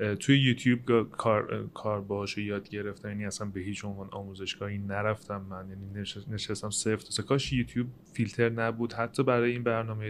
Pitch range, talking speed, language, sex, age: 110-130 Hz, 155 wpm, Persian, male, 30-49